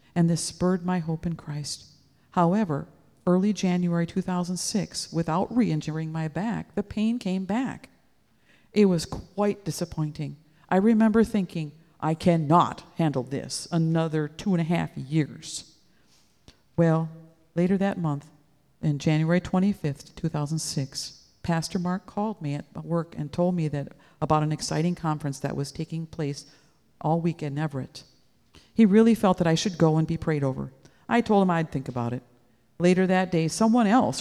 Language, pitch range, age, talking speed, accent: English, 155-185 Hz, 50-69, 155 wpm, American